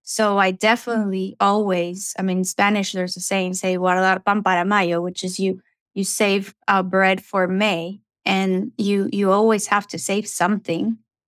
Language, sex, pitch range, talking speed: English, female, 195-230 Hz, 165 wpm